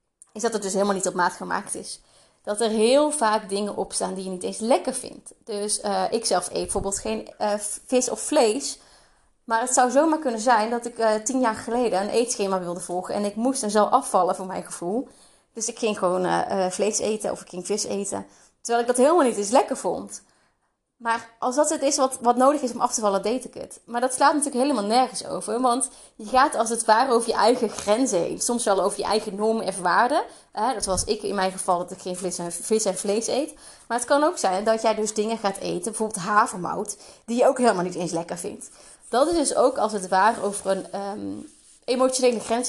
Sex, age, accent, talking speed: female, 30-49, Dutch, 235 wpm